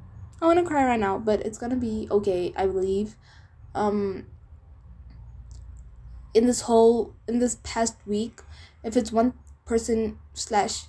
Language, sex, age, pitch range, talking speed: English, female, 10-29, 190-220 Hz, 145 wpm